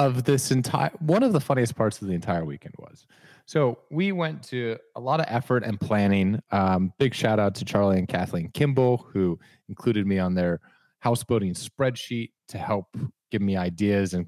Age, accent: 30-49, American